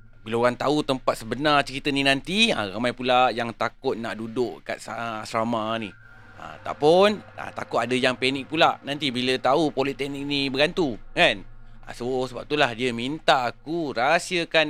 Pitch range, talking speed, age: 110-140 Hz, 170 wpm, 30-49